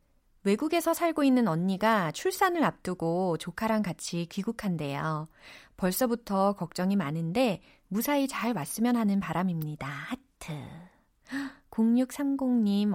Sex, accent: female, native